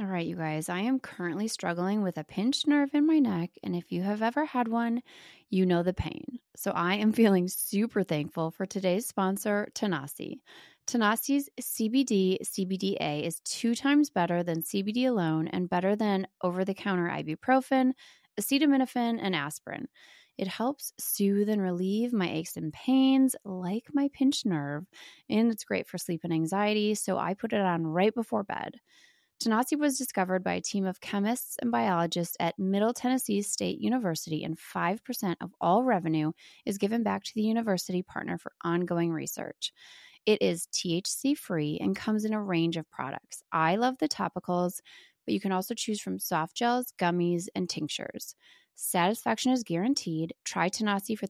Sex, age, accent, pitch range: female, 20-39, American, 175-240 Hz